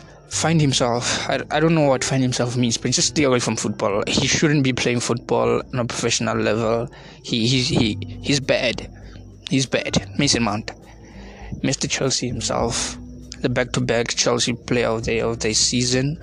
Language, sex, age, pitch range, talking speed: English, male, 20-39, 115-135 Hz, 170 wpm